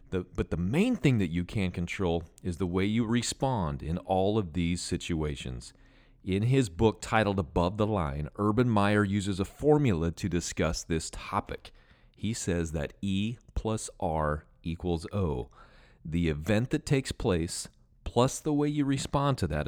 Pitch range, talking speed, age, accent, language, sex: 85-115 Hz, 165 wpm, 40-59, American, English, male